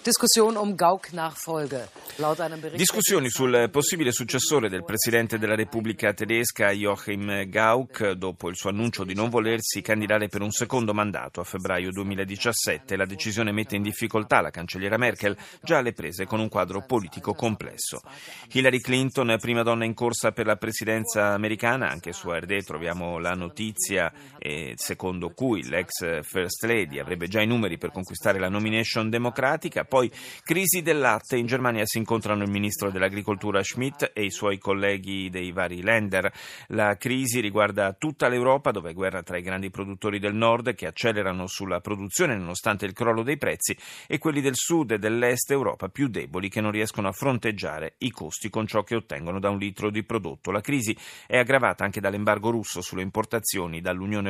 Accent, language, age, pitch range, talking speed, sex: native, Italian, 30-49, 100-120 Hz, 165 wpm, male